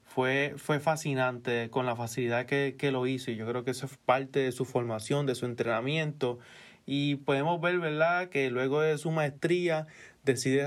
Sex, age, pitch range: male, 30-49, 125-150 Hz